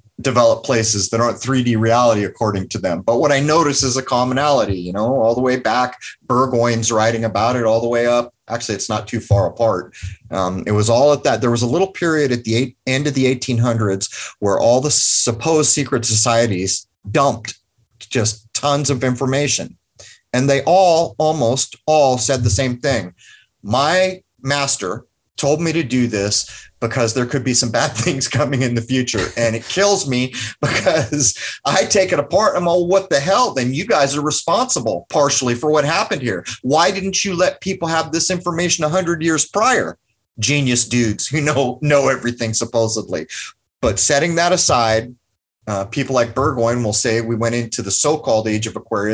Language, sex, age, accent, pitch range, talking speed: English, male, 30-49, American, 115-145 Hz, 185 wpm